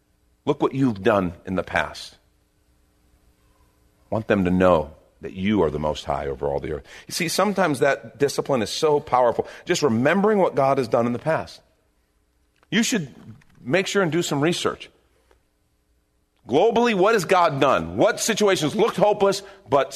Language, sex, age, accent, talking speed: English, male, 40-59, American, 170 wpm